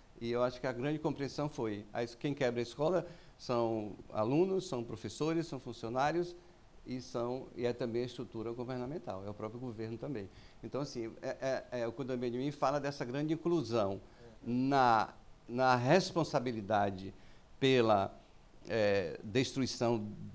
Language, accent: Portuguese, Brazilian